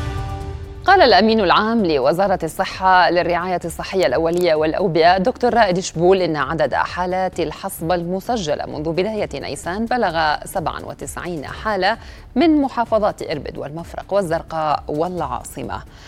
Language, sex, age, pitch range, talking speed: Arabic, female, 30-49, 150-185 Hz, 110 wpm